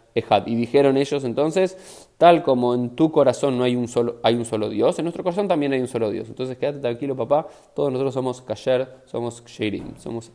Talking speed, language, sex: 215 wpm, Spanish, male